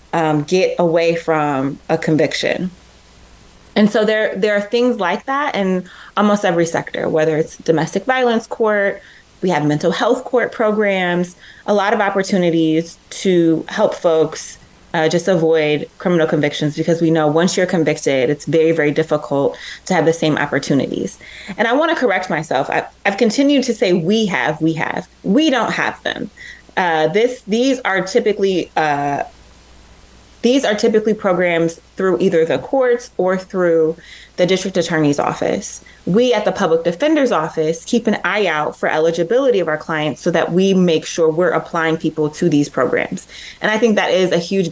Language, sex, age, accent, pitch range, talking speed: English, female, 20-39, American, 160-210 Hz, 170 wpm